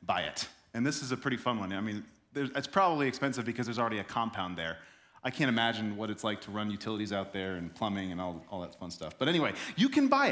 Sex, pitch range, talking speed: male, 105-160 Hz, 255 wpm